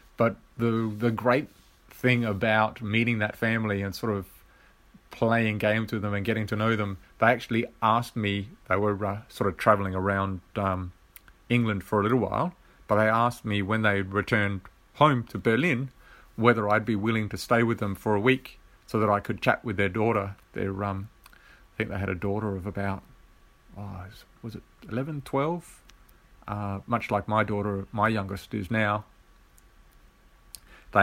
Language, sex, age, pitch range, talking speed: English, male, 40-59, 100-115 Hz, 175 wpm